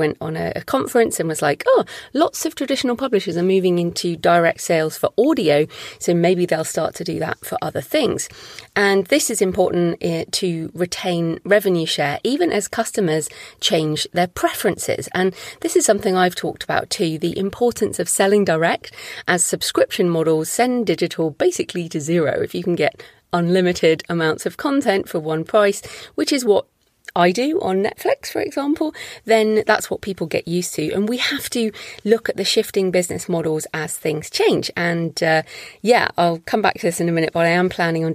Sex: female